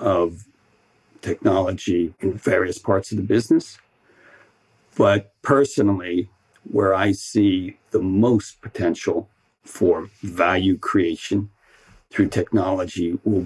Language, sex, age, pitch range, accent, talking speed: English, male, 50-69, 95-115 Hz, American, 100 wpm